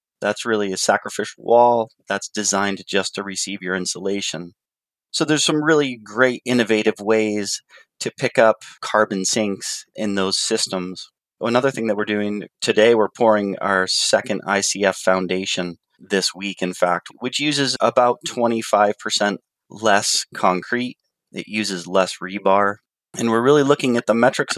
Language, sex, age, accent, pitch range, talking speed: English, male, 30-49, American, 100-115 Hz, 145 wpm